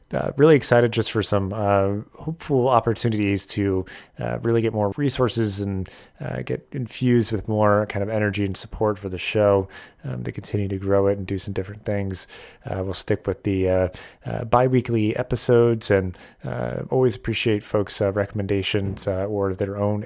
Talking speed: 180 wpm